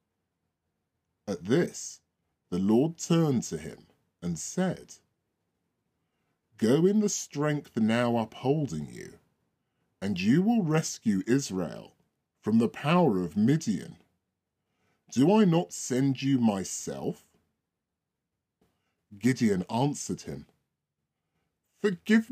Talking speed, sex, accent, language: 95 wpm, female, British, English